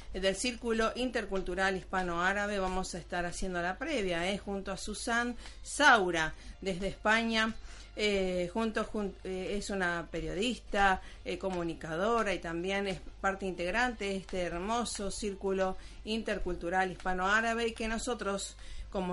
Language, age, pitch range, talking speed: Spanish, 40-59, 180-220 Hz, 130 wpm